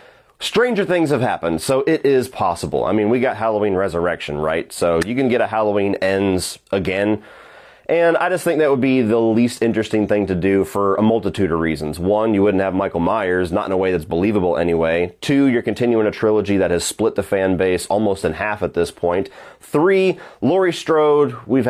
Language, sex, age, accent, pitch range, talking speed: English, male, 30-49, American, 100-140 Hz, 205 wpm